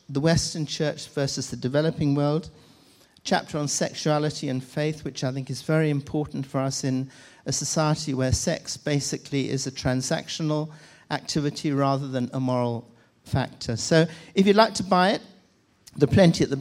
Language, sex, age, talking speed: English, male, 50-69, 170 wpm